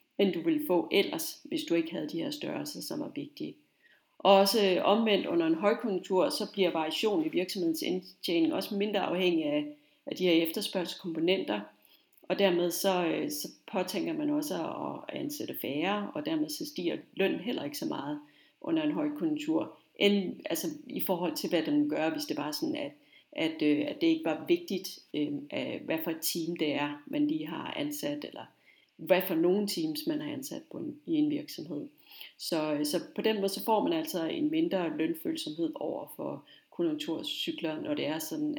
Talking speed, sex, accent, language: 180 wpm, female, native, Danish